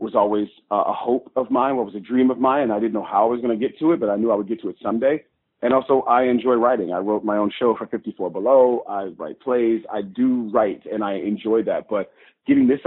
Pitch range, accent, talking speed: 105-125 Hz, American, 275 wpm